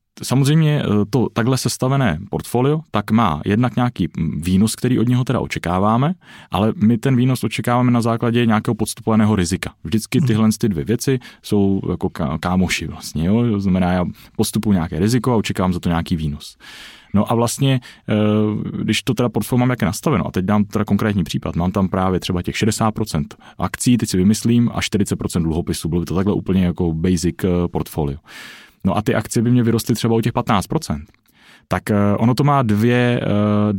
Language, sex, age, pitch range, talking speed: Czech, male, 30-49, 95-115 Hz, 180 wpm